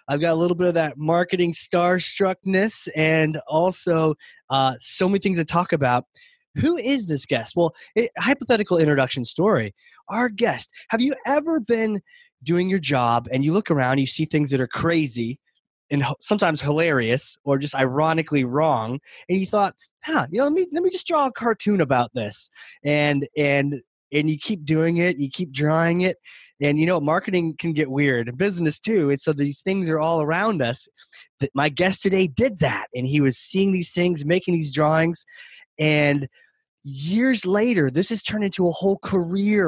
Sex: male